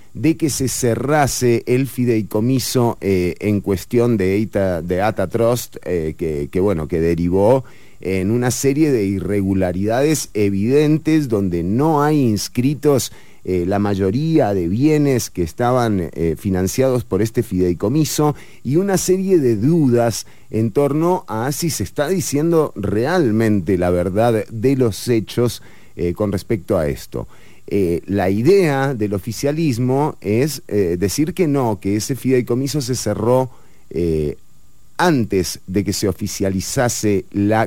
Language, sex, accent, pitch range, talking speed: English, male, Argentinian, 95-135 Hz, 130 wpm